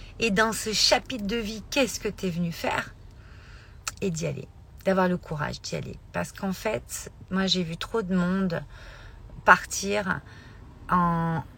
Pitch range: 140-185 Hz